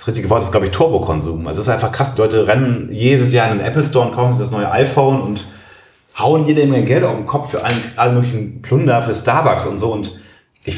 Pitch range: 100-130 Hz